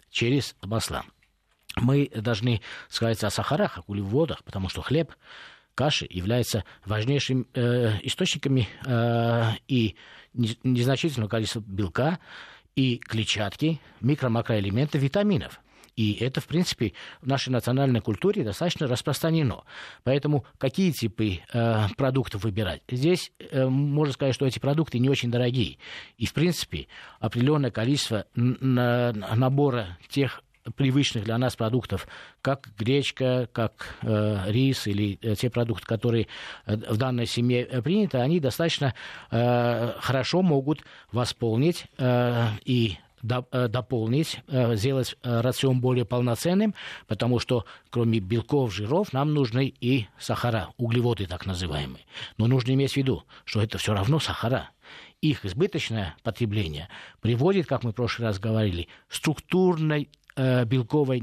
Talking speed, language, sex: 120 wpm, Russian, male